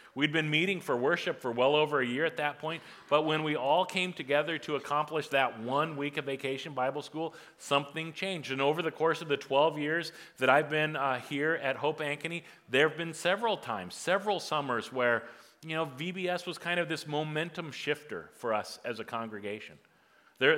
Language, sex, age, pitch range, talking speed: English, male, 40-59, 135-160 Hz, 200 wpm